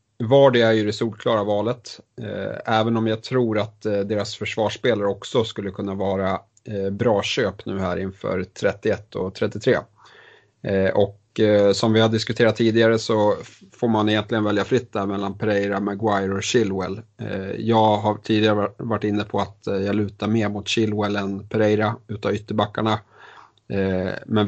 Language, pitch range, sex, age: Swedish, 100-110 Hz, male, 30-49